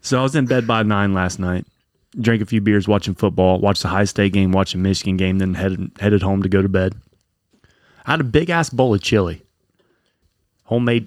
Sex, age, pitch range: male, 30-49, 95-125 Hz